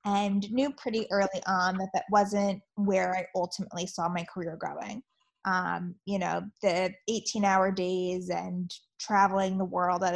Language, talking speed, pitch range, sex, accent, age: English, 155 wpm, 185-215 Hz, female, American, 20-39